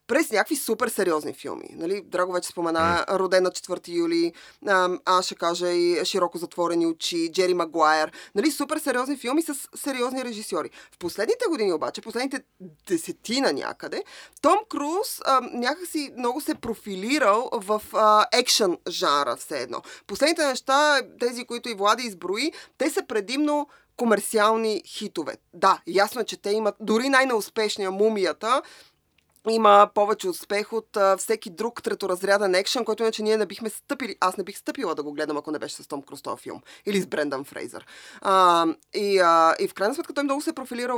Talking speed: 160 wpm